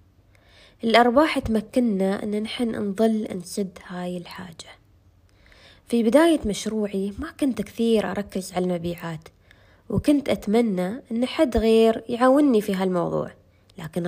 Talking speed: 115 wpm